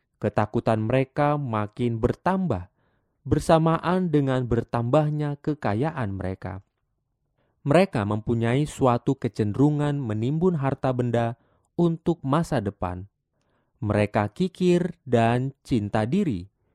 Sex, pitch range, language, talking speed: male, 115-155 Hz, Indonesian, 85 wpm